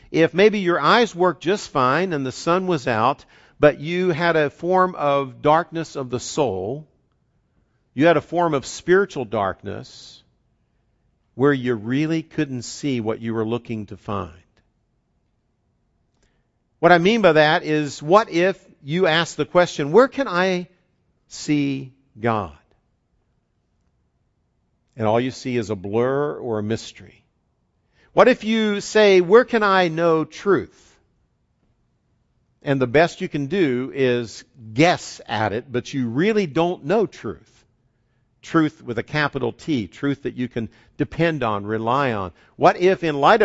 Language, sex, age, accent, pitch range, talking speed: English, male, 50-69, American, 120-170 Hz, 150 wpm